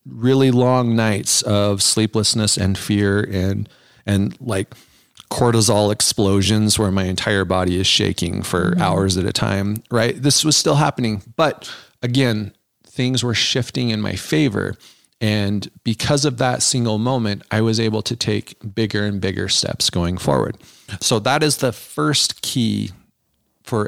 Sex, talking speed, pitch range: male, 150 wpm, 105-125 Hz